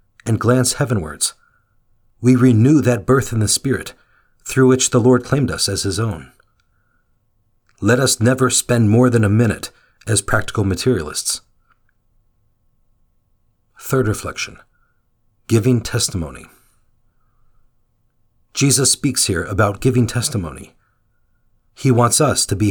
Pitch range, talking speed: 105-130 Hz, 120 wpm